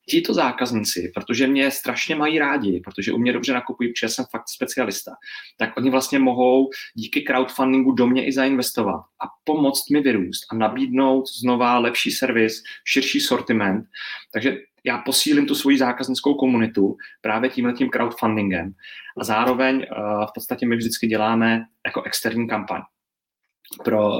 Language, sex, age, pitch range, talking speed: Czech, male, 30-49, 110-130 Hz, 145 wpm